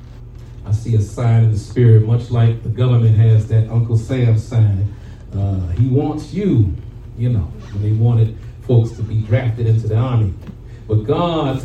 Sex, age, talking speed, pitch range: male, 40-59, 175 wpm, 115-145 Hz